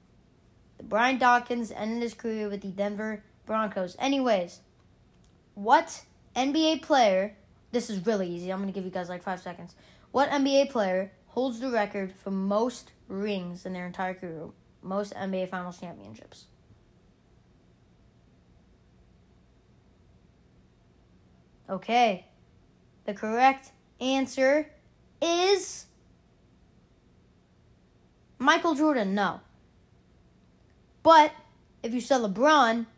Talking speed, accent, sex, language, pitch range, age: 100 wpm, American, female, English, 185-245 Hz, 20-39